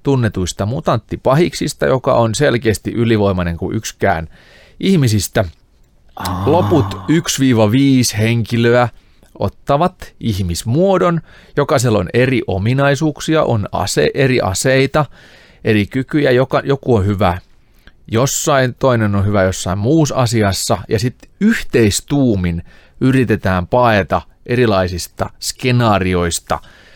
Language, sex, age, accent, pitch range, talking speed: Finnish, male, 30-49, native, 95-130 Hz, 95 wpm